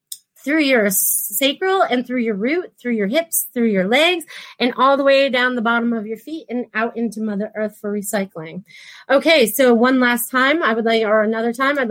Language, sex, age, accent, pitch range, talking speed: English, female, 30-49, American, 225-265 Hz, 210 wpm